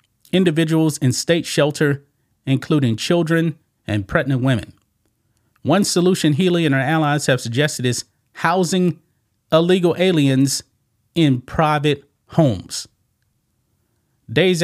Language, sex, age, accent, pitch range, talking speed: English, male, 40-59, American, 115-165 Hz, 105 wpm